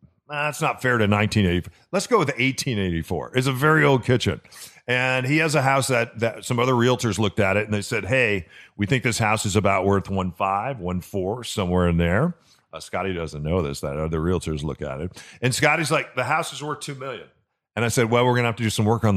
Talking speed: 245 wpm